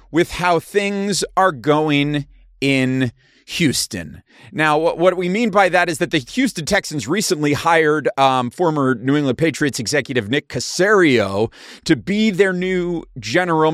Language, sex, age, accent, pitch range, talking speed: English, male, 30-49, American, 130-180 Hz, 145 wpm